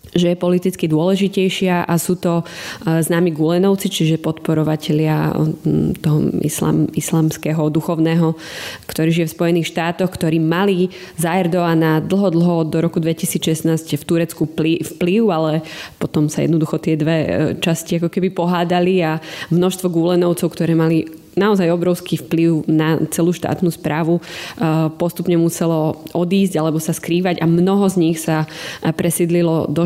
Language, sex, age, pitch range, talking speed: Slovak, female, 20-39, 160-175 Hz, 135 wpm